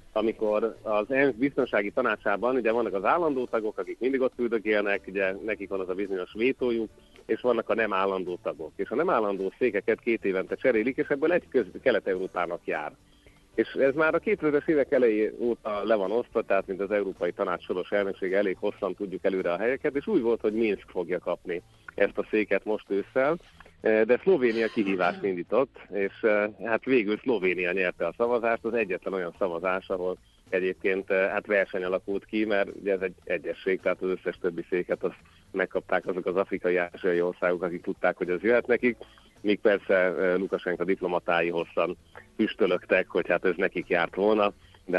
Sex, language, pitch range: male, Hungarian, 95-115 Hz